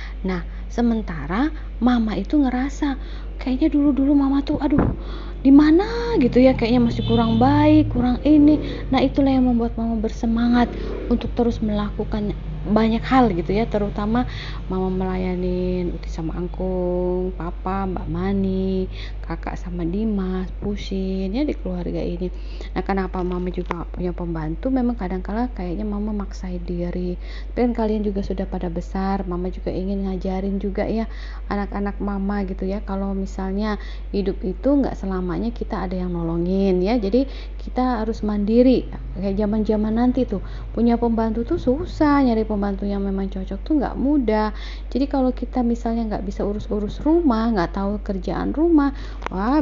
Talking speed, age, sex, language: 150 wpm, 30-49, female, Indonesian